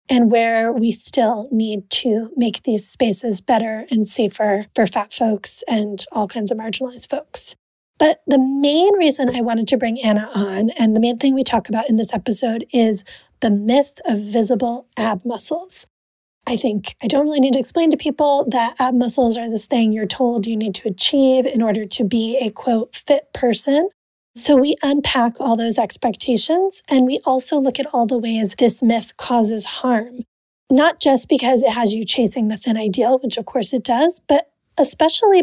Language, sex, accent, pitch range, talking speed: English, female, American, 225-270 Hz, 190 wpm